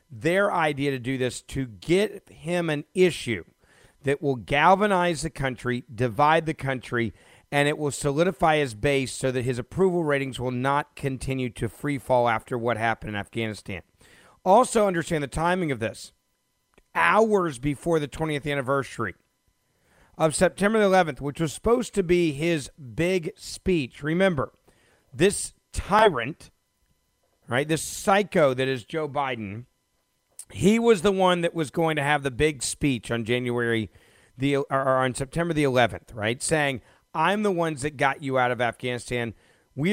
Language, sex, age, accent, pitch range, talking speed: English, male, 40-59, American, 125-165 Hz, 160 wpm